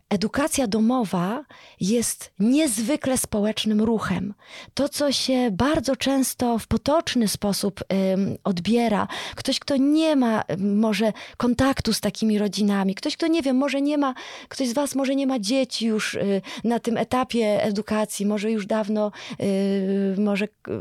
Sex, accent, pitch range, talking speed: female, native, 210-275 Hz, 135 wpm